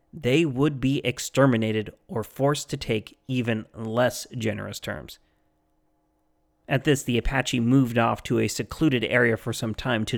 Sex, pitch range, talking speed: male, 105-135 Hz, 155 wpm